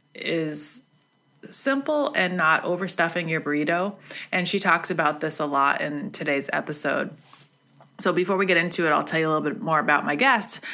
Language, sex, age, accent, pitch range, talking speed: English, female, 20-39, American, 150-195 Hz, 185 wpm